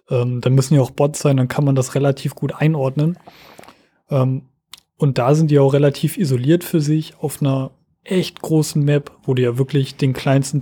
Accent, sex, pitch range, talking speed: German, male, 135-160 Hz, 185 wpm